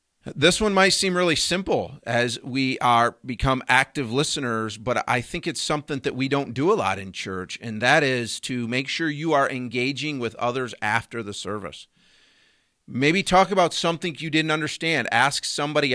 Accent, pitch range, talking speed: American, 115-150 Hz, 180 wpm